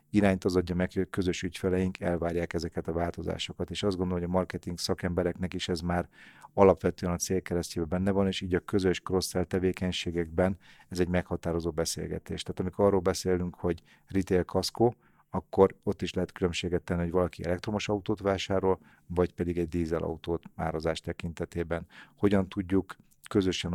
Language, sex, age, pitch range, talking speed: Hungarian, male, 40-59, 85-95 Hz, 165 wpm